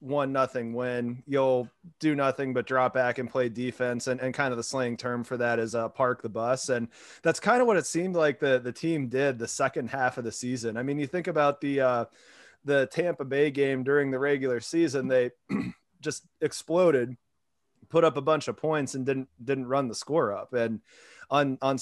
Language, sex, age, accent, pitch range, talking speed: English, male, 30-49, American, 125-145 Hz, 215 wpm